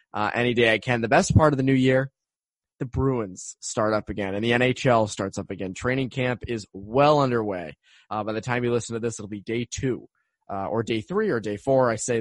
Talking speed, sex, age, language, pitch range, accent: 240 wpm, male, 20-39, English, 105-135 Hz, American